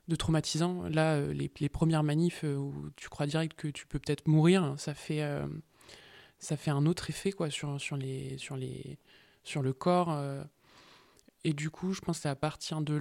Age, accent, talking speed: 20-39, French, 215 wpm